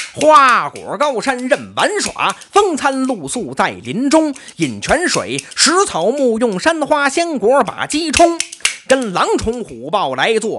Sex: male